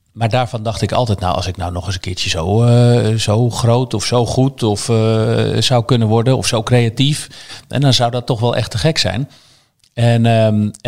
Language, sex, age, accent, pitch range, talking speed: Dutch, male, 50-69, Dutch, 105-125 Hz, 220 wpm